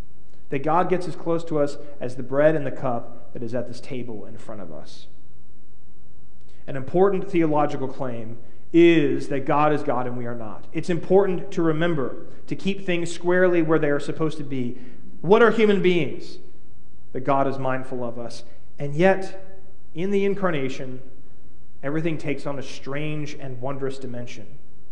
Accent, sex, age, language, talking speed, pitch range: American, male, 40-59, English, 175 wpm, 120-170 Hz